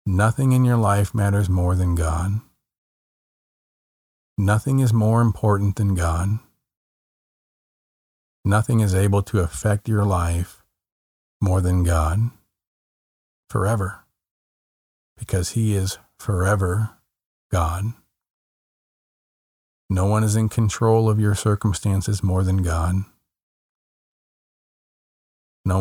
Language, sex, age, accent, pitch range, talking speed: English, male, 40-59, American, 90-110 Hz, 100 wpm